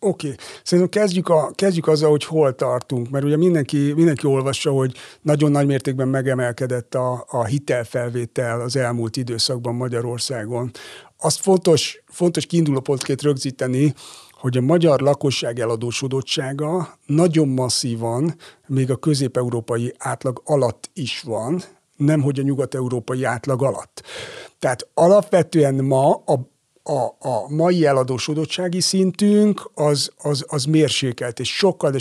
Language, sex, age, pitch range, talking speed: Hungarian, male, 60-79, 130-160 Hz, 125 wpm